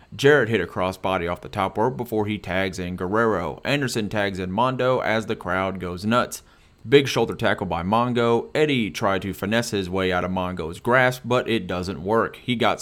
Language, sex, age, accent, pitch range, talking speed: English, male, 30-49, American, 95-115 Hz, 200 wpm